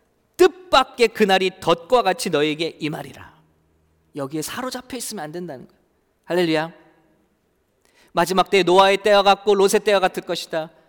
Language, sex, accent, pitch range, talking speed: English, male, Korean, 145-230 Hz, 130 wpm